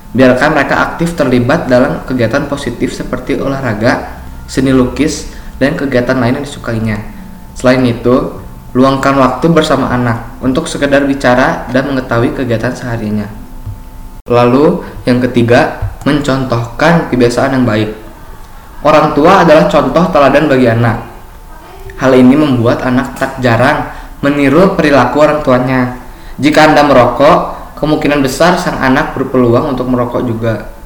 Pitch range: 120-140 Hz